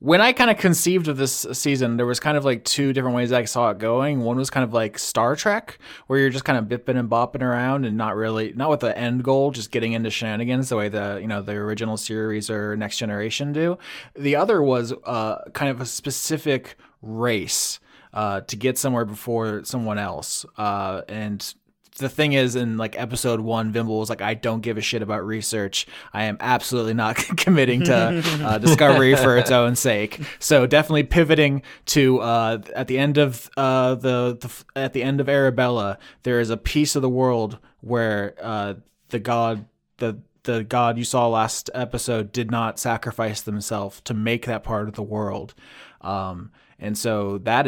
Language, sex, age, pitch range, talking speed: English, male, 20-39, 110-130 Hz, 200 wpm